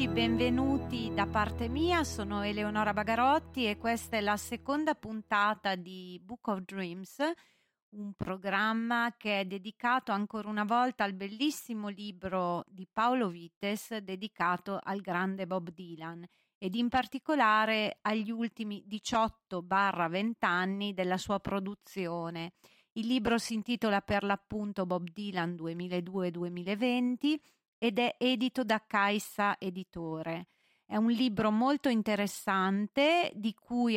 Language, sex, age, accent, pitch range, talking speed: Italian, female, 40-59, native, 190-230 Hz, 120 wpm